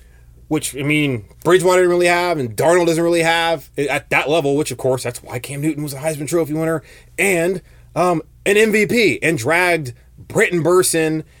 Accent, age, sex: American, 20-39, male